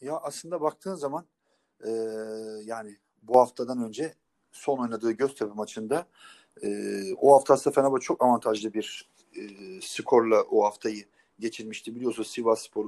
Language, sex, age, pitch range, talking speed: Turkish, male, 40-59, 110-145 Hz, 130 wpm